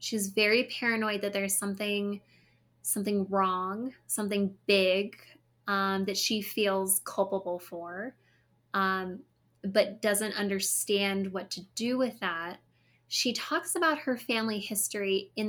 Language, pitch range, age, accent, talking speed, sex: English, 185-210 Hz, 10-29, American, 125 wpm, female